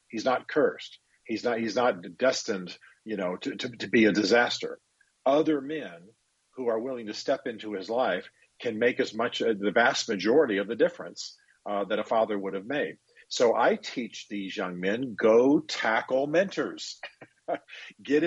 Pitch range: 100-145 Hz